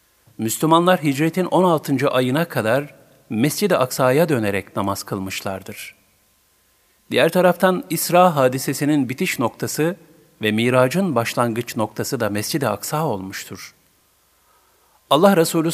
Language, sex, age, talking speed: Turkish, male, 50-69, 100 wpm